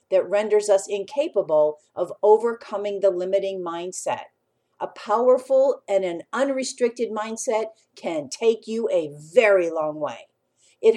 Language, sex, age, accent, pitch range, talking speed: English, female, 50-69, American, 195-275 Hz, 125 wpm